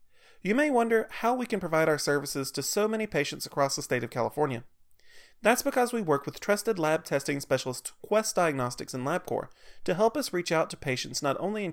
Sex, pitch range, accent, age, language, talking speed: male, 140-205 Hz, American, 30-49, English, 210 wpm